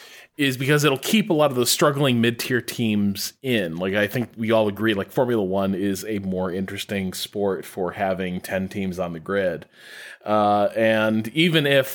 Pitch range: 105-140 Hz